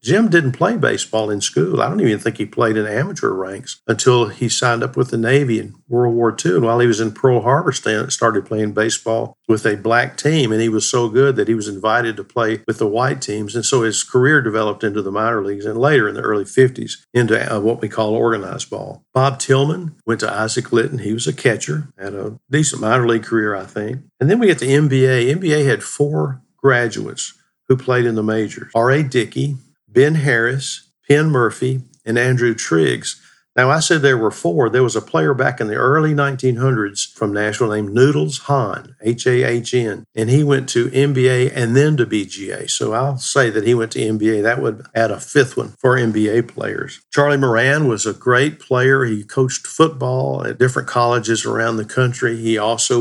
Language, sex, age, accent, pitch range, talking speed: English, male, 50-69, American, 110-135 Hz, 205 wpm